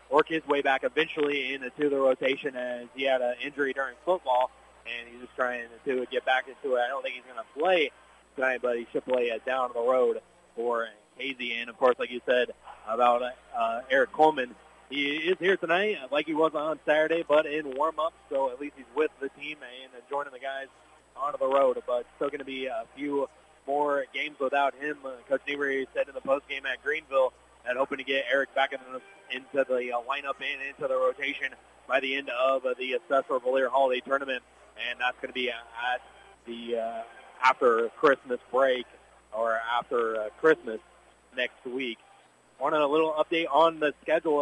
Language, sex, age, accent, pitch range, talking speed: English, male, 30-49, American, 125-155 Hz, 200 wpm